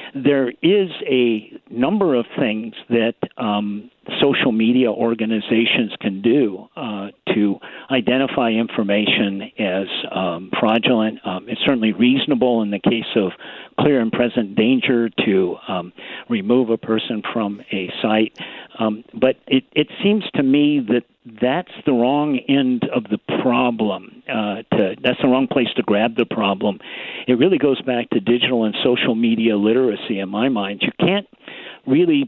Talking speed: 150 wpm